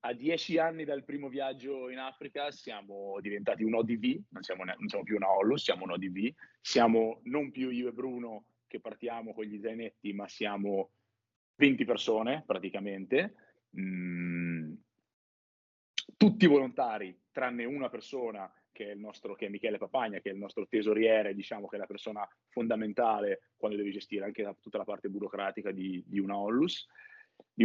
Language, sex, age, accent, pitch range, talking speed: Italian, male, 30-49, native, 105-145 Hz, 165 wpm